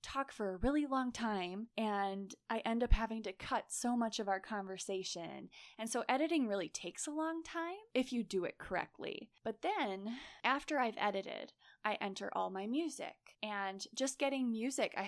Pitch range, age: 190-245 Hz, 20-39